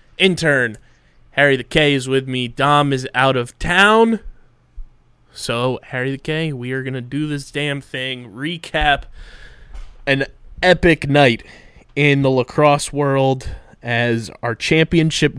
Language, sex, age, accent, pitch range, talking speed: English, male, 20-39, American, 125-150 Hz, 135 wpm